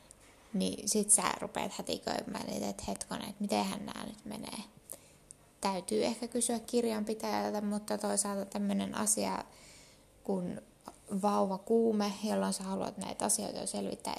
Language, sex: Finnish, female